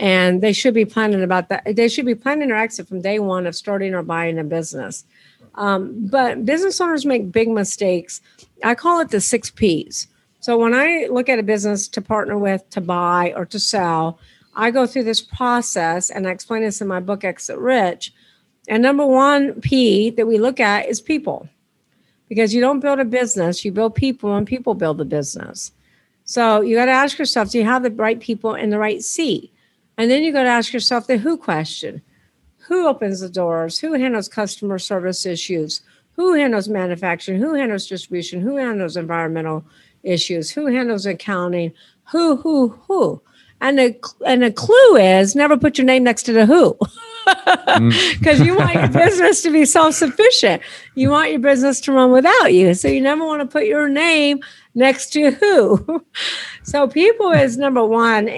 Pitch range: 190-275 Hz